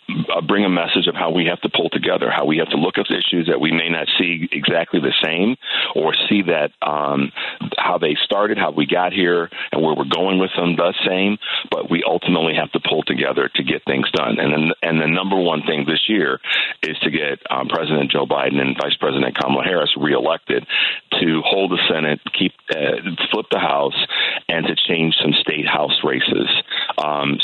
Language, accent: English, American